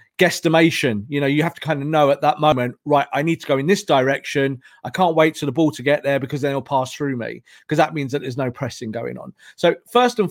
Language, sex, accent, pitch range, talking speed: English, male, British, 140-195 Hz, 275 wpm